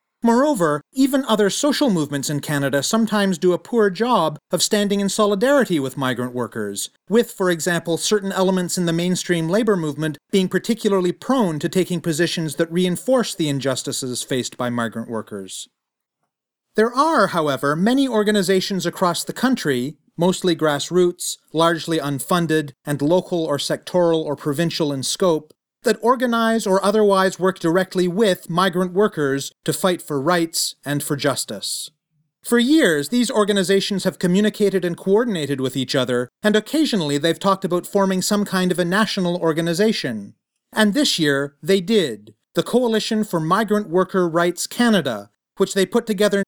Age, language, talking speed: 40-59, English, 150 wpm